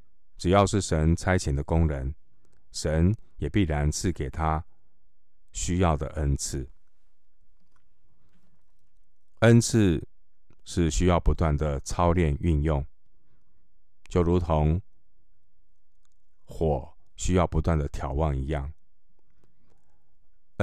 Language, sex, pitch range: Chinese, male, 80-95 Hz